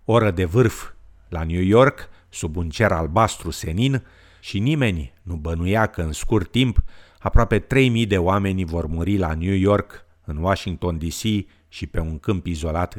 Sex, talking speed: male, 165 wpm